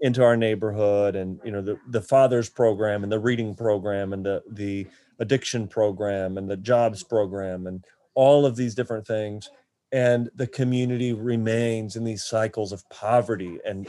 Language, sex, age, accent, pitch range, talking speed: English, male, 30-49, American, 105-125 Hz, 170 wpm